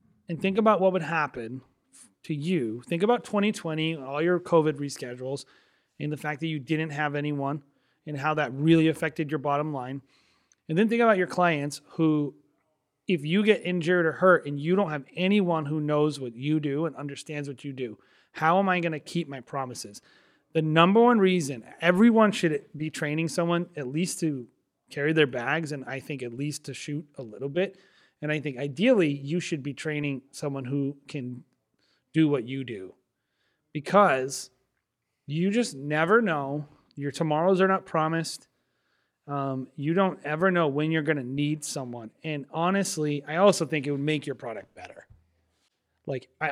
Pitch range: 140-175 Hz